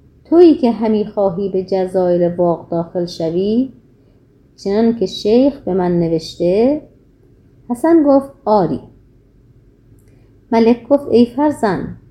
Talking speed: 110 wpm